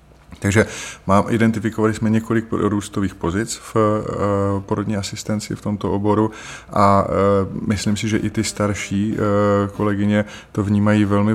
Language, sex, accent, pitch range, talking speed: Czech, male, native, 95-105 Hz, 125 wpm